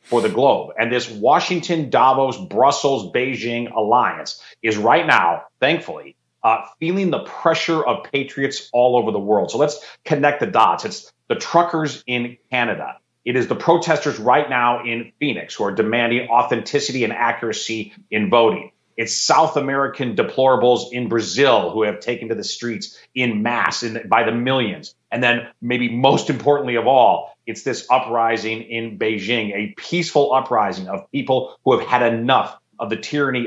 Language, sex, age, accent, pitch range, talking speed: English, male, 40-59, American, 115-140 Hz, 165 wpm